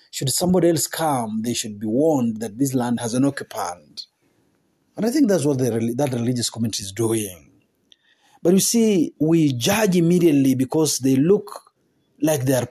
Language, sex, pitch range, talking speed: Swahili, male, 125-190 Hz, 175 wpm